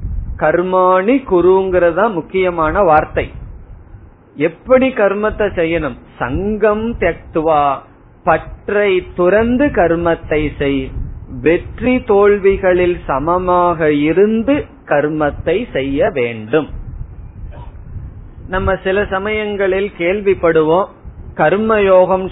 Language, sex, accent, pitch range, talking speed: Tamil, male, native, 155-195 Hz, 65 wpm